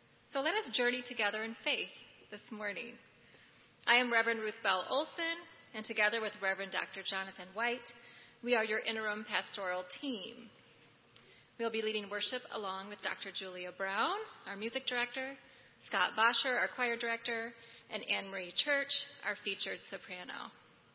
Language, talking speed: English, 145 wpm